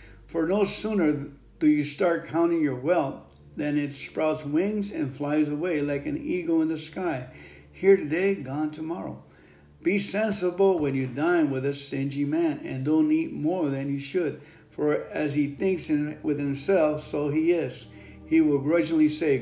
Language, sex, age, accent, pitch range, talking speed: English, male, 60-79, American, 135-175 Hz, 170 wpm